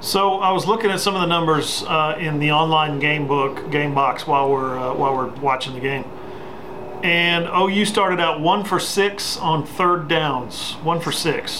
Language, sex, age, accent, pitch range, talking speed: English, male, 40-59, American, 145-185 Hz, 195 wpm